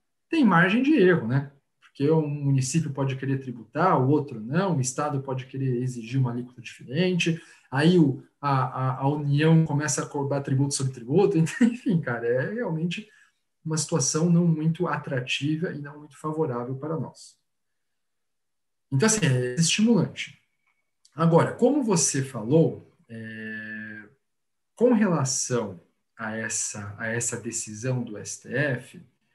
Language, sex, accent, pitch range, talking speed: Portuguese, male, Brazilian, 130-180 Hz, 135 wpm